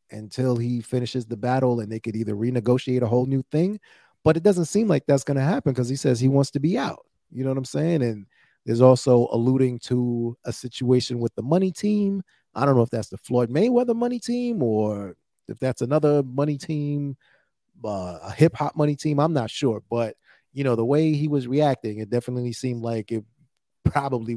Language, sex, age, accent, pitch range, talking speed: English, male, 30-49, American, 115-150 Hz, 210 wpm